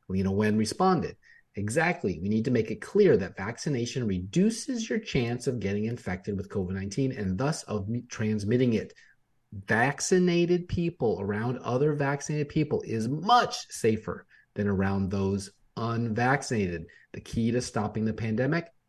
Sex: male